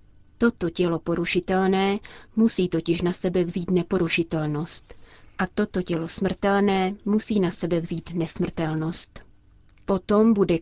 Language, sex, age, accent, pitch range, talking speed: Czech, female, 30-49, native, 165-200 Hz, 115 wpm